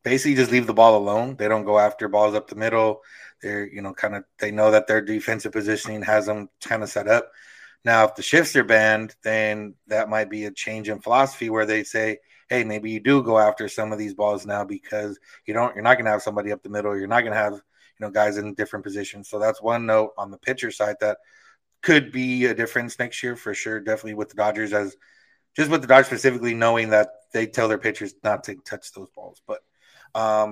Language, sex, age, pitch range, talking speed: English, male, 30-49, 105-125 Hz, 235 wpm